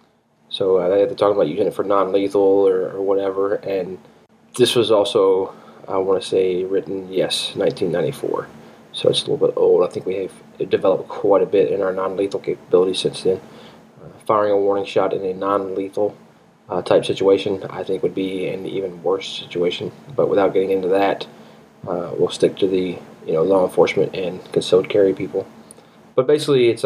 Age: 20-39